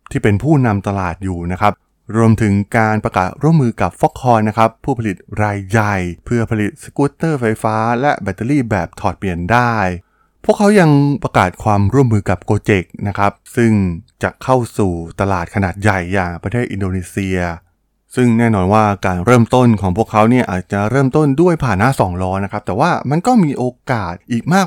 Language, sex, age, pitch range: Thai, male, 20-39, 95-120 Hz